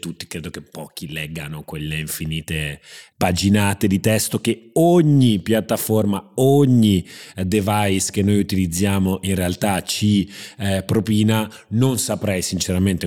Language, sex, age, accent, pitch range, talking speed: Italian, male, 30-49, native, 90-110 Hz, 120 wpm